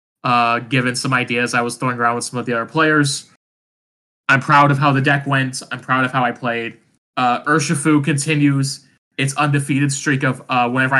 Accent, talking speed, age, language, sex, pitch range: American, 195 wpm, 20-39, English, male, 120-150 Hz